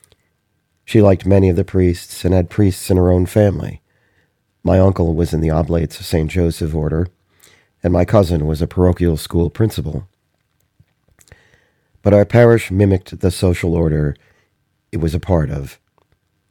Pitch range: 85-100 Hz